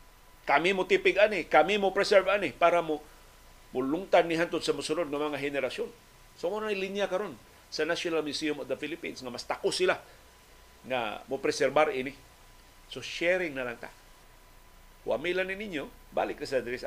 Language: Filipino